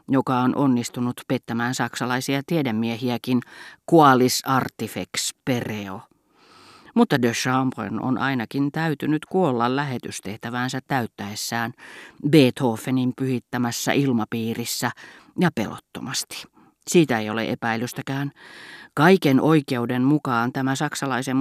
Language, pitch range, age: Finnish, 120-145 Hz, 40-59